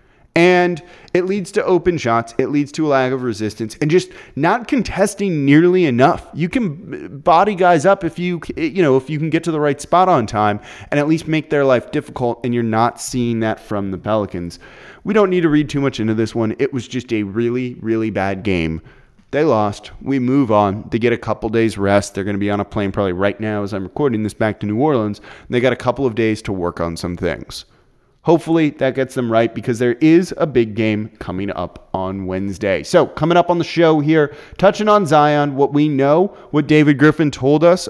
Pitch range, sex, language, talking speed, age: 105-155 Hz, male, English, 230 wpm, 20-39